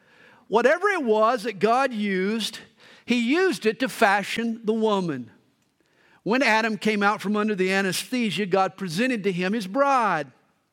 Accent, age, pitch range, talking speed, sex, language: American, 50-69, 200-275 Hz, 150 wpm, male, English